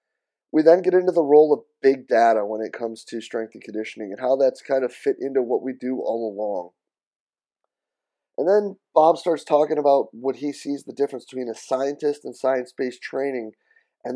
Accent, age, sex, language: American, 20-39, male, English